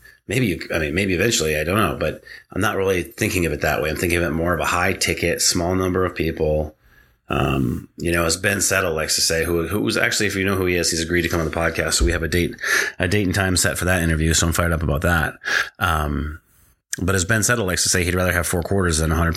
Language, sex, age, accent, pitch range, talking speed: English, male, 30-49, American, 85-95 Hz, 285 wpm